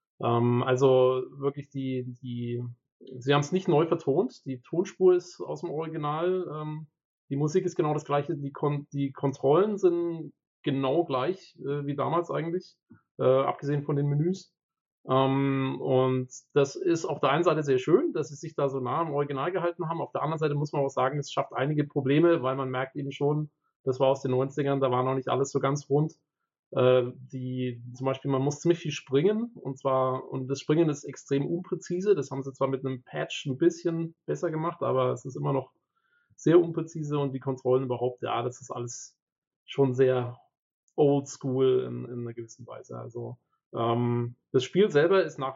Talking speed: 185 wpm